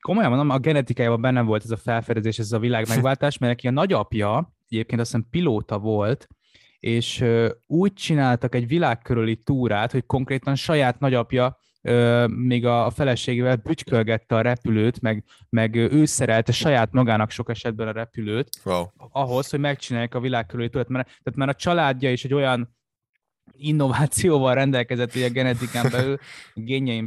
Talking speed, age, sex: 155 wpm, 20-39, male